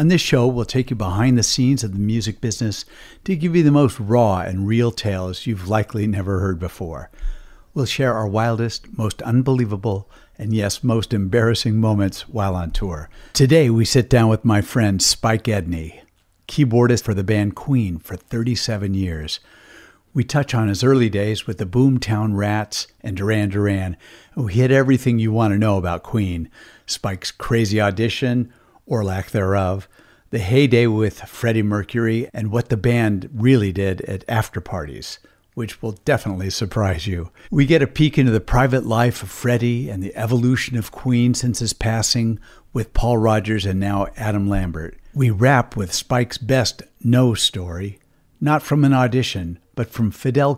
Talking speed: 170 wpm